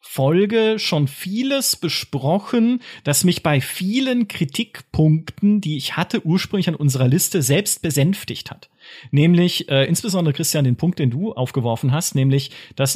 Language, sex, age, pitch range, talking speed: German, male, 40-59, 135-180 Hz, 145 wpm